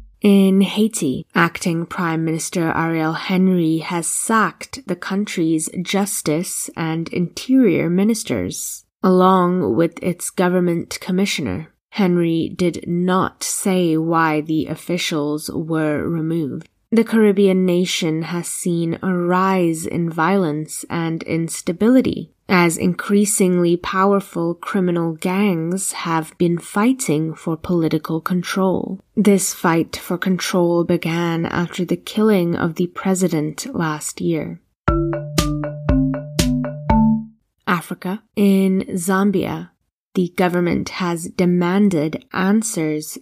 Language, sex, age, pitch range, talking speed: English, female, 20-39, 165-190 Hz, 100 wpm